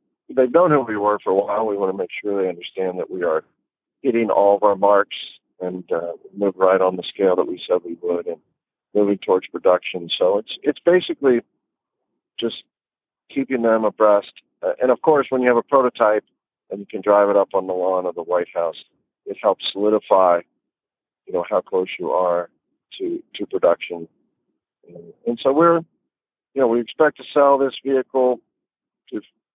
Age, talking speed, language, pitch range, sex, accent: 50-69, 190 wpm, English, 100-140 Hz, male, American